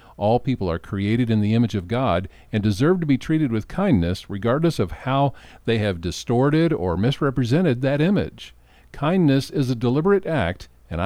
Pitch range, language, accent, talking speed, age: 105-155 Hz, English, American, 175 wpm, 50-69